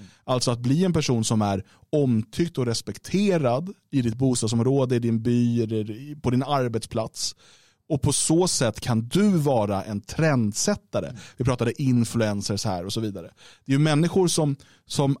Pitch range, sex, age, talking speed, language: 110-140 Hz, male, 30-49, 160 wpm, Swedish